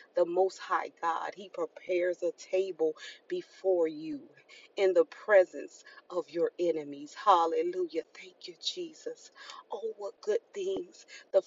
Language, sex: English, female